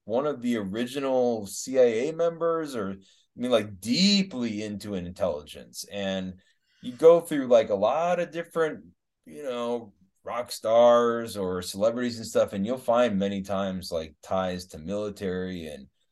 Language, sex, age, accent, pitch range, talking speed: English, male, 20-39, American, 105-175 Hz, 150 wpm